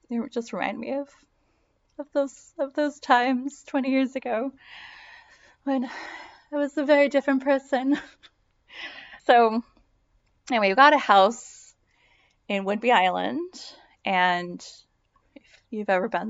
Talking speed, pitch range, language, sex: 120 wpm, 185-270 Hz, English, female